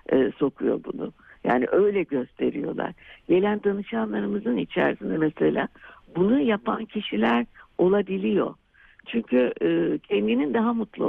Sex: female